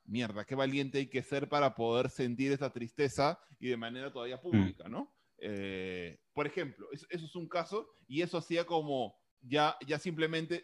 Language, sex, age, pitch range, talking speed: Spanish, male, 30-49, 130-160 Hz, 180 wpm